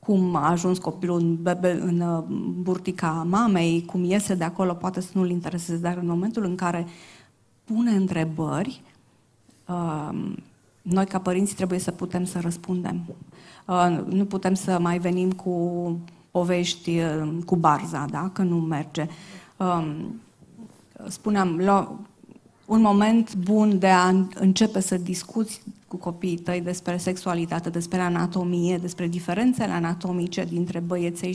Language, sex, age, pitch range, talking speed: Romanian, female, 20-39, 175-210 Hz, 120 wpm